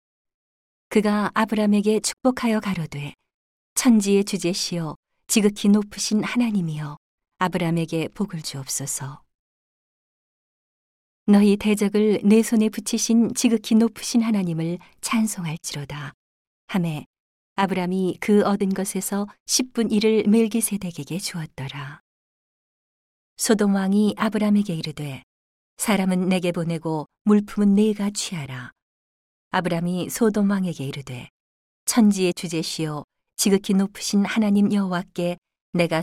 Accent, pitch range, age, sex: native, 160-210 Hz, 40-59, female